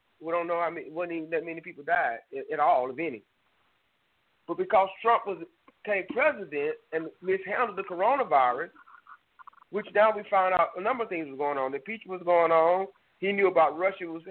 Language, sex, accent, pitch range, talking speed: English, male, American, 170-230 Hz, 205 wpm